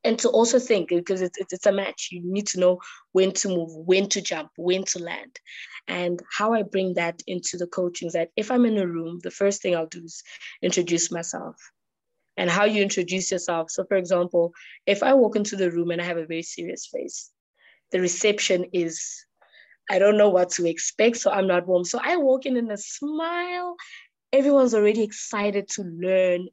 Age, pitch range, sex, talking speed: 20-39, 180-245 Hz, female, 205 wpm